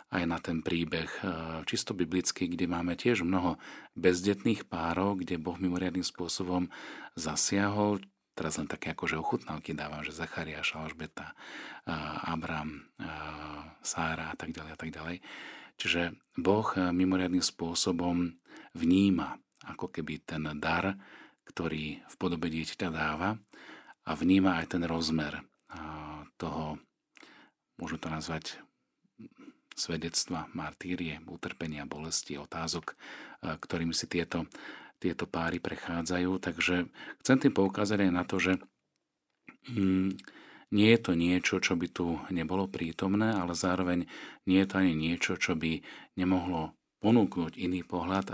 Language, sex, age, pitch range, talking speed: Slovak, male, 40-59, 80-95 Hz, 125 wpm